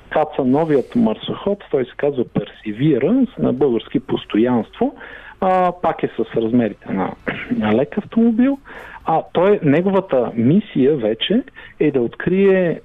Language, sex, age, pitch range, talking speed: Bulgarian, male, 50-69, 135-195 Hz, 130 wpm